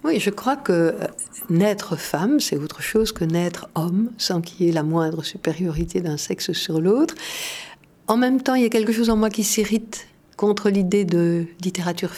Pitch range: 170-210 Hz